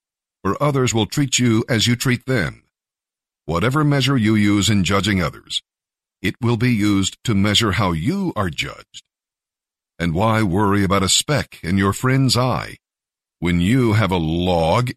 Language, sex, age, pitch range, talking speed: English, male, 50-69, 95-130 Hz, 165 wpm